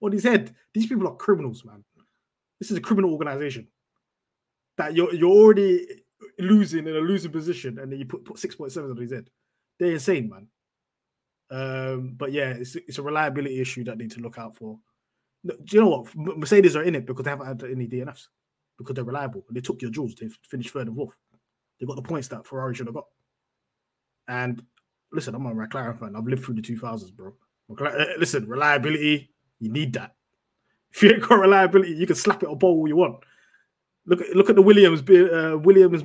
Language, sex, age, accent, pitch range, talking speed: English, male, 20-39, British, 125-180 Hz, 205 wpm